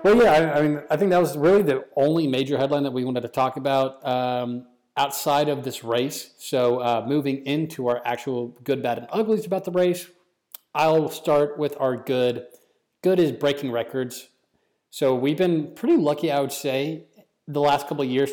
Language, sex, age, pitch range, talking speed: English, male, 30-49, 125-150 Hz, 195 wpm